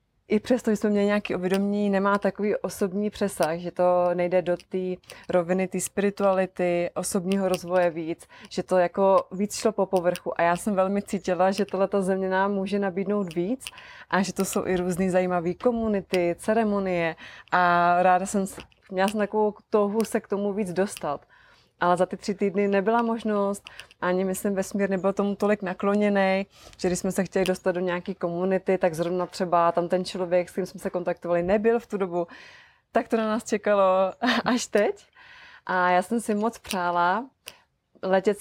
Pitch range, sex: 180-205 Hz, female